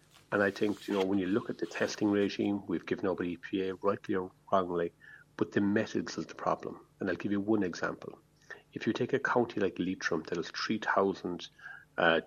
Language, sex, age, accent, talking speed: English, male, 40-59, Irish, 205 wpm